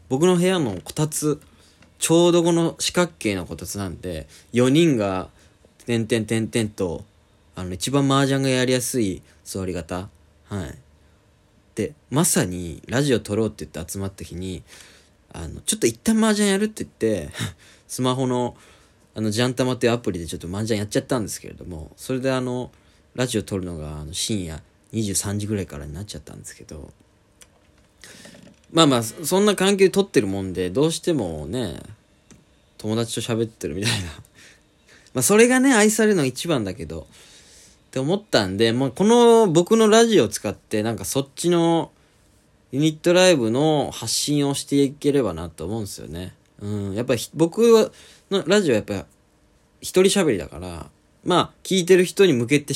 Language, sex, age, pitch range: Japanese, male, 20-39, 90-150 Hz